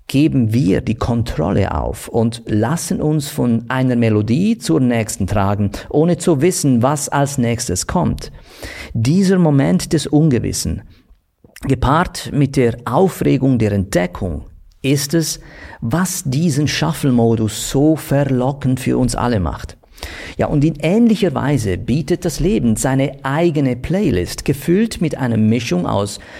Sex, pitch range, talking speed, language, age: male, 115-155 Hz, 130 wpm, German, 50-69